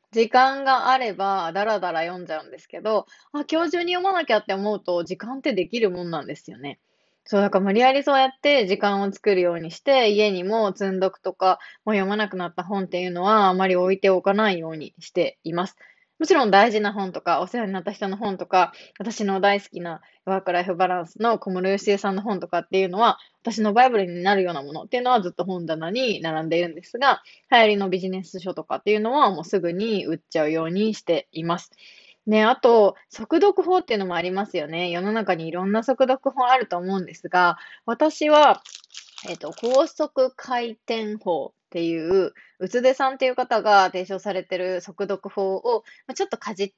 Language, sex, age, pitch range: Japanese, female, 20-39, 185-255 Hz